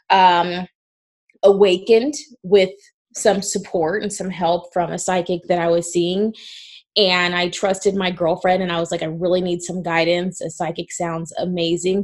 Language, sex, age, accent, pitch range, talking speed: English, female, 20-39, American, 170-200 Hz, 165 wpm